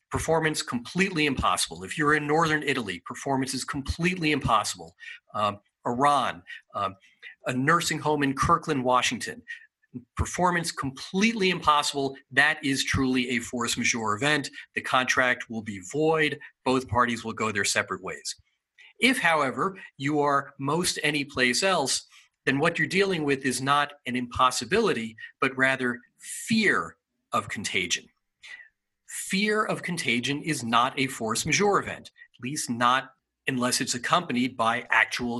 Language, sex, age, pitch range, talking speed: English, male, 40-59, 125-160 Hz, 135 wpm